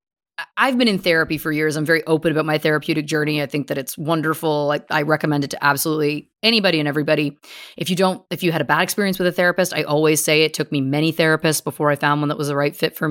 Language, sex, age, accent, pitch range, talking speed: English, female, 30-49, American, 150-210 Hz, 260 wpm